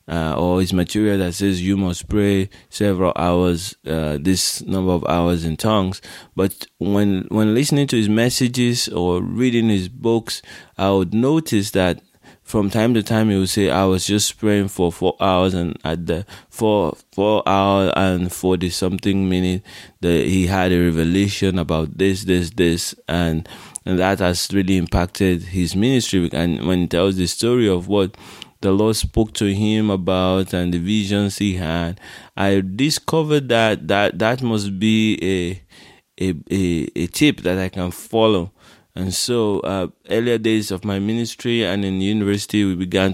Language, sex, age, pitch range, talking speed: English, male, 20-39, 90-105 Hz, 170 wpm